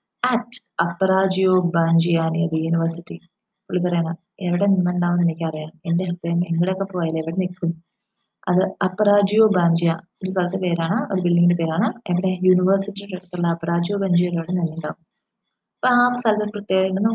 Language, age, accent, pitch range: English, 20-39, Indian, 170-210 Hz